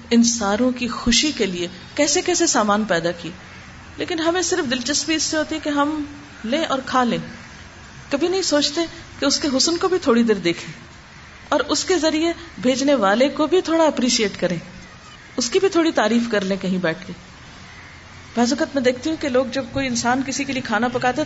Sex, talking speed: female, 200 wpm